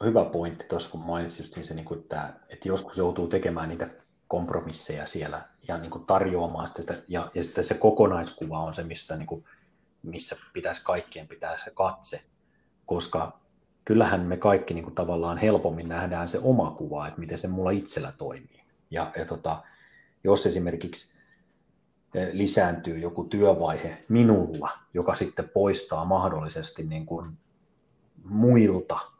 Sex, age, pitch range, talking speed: male, 30-49, 85-100 Hz, 120 wpm